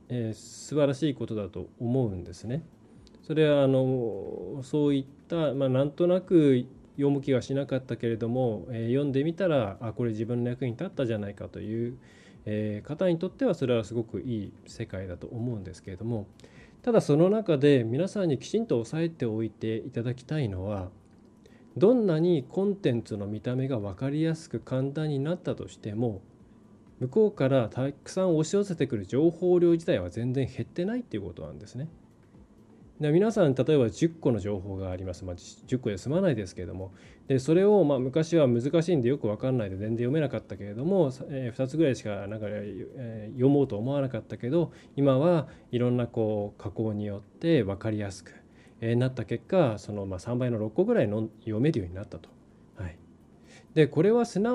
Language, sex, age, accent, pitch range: Japanese, male, 20-39, native, 110-150 Hz